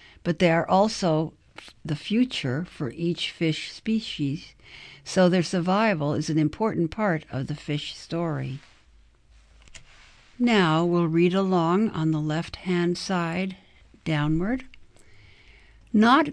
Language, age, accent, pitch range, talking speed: English, 60-79, American, 150-195 Hz, 115 wpm